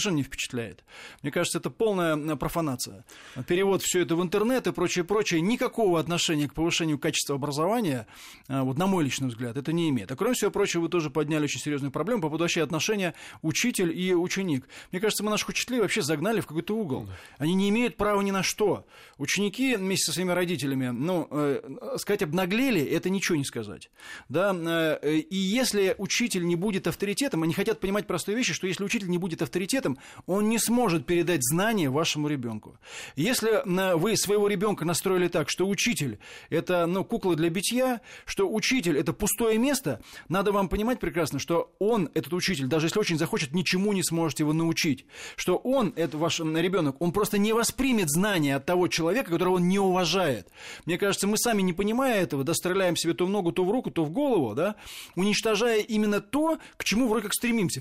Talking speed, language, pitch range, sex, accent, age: 190 wpm, Russian, 160-210 Hz, male, native, 20-39